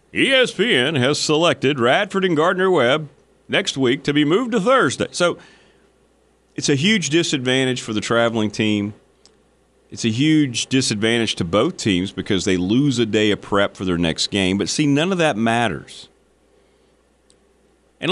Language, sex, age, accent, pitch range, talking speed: English, male, 40-59, American, 105-145 Hz, 160 wpm